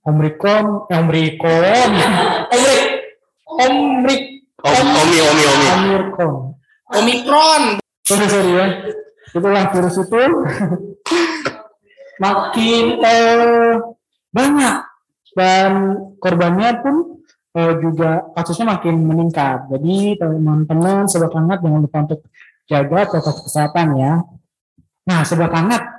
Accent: native